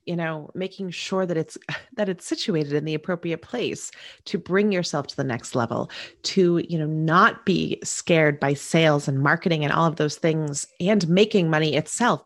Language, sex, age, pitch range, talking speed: English, female, 30-49, 150-205 Hz, 190 wpm